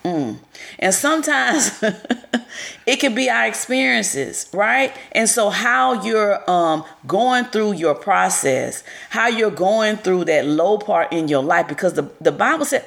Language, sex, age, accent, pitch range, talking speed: English, female, 30-49, American, 160-225 Hz, 155 wpm